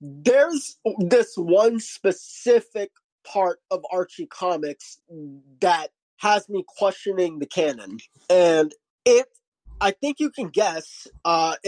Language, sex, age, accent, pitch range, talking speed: English, male, 20-39, American, 180-265 Hz, 115 wpm